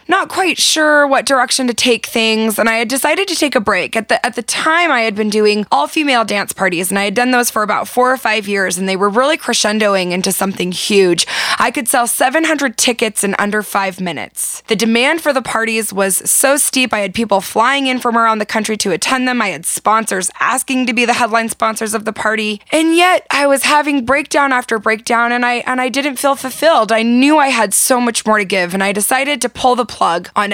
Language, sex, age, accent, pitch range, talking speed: English, female, 20-39, American, 195-255 Hz, 240 wpm